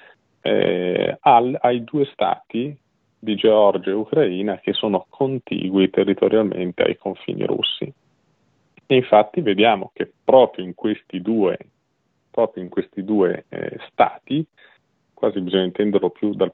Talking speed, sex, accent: 125 wpm, male, native